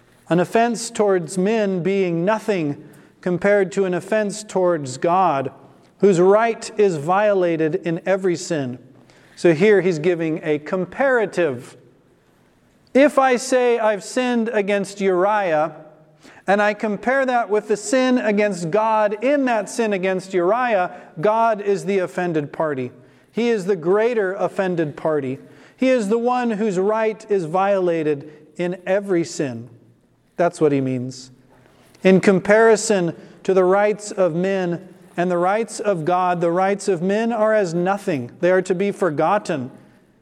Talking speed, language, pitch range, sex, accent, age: 145 wpm, English, 170-210 Hz, male, American, 40-59